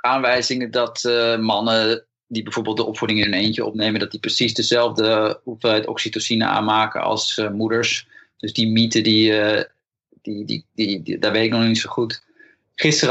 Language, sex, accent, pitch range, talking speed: Dutch, male, Dutch, 110-130 Hz, 195 wpm